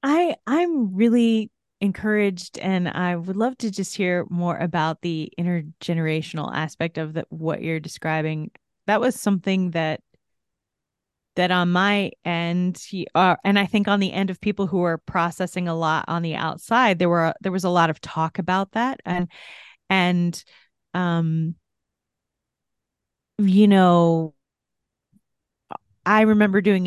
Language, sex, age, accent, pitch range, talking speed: English, female, 30-49, American, 170-200 Hz, 140 wpm